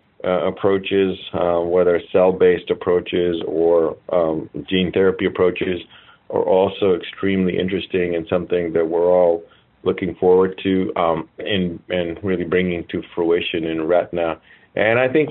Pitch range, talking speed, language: 85-100 Hz, 140 wpm, English